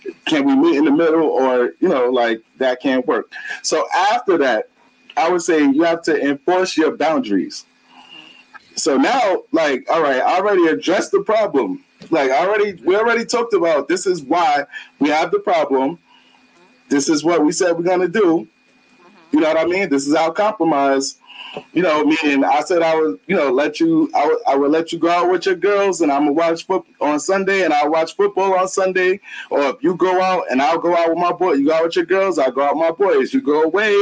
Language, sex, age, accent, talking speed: English, male, 20-39, American, 225 wpm